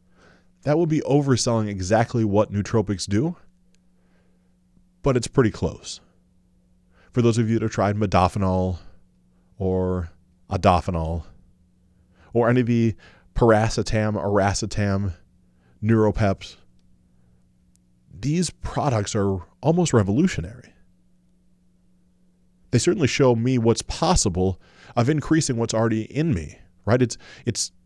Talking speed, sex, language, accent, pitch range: 105 wpm, male, English, American, 90-120 Hz